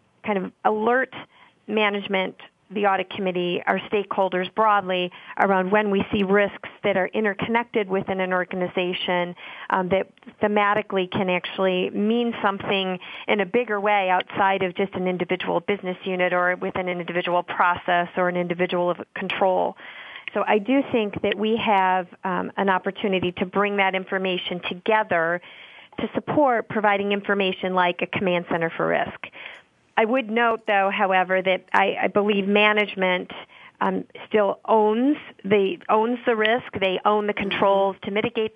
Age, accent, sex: 40-59, American, female